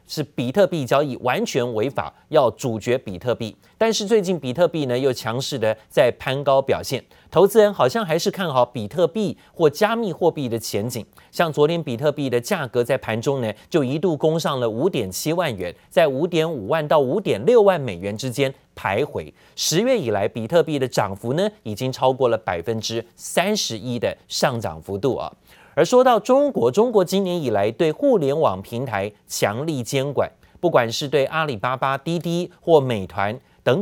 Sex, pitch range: male, 125-190 Hz